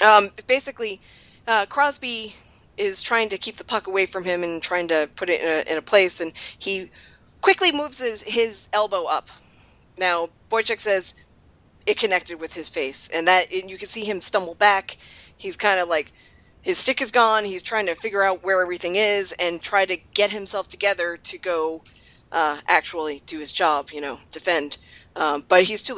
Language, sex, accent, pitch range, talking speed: English, female, American, 170-235 Hz, 195 wpm